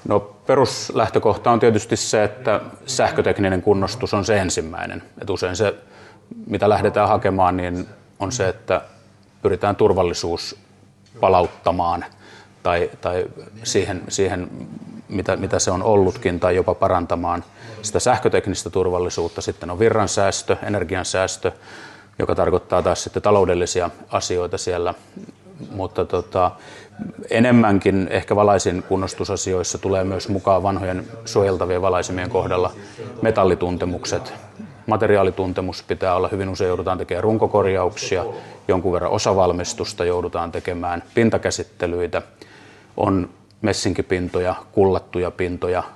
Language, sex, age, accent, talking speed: Finnish, male, 30-49, native, 110 wpm